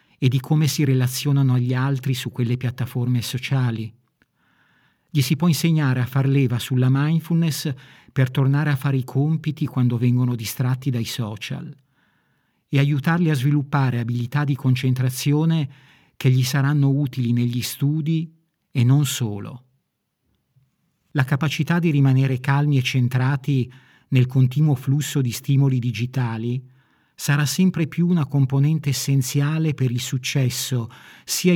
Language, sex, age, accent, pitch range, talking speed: Italian, male, 50-69, native, 125-145 Hz, 135 wpm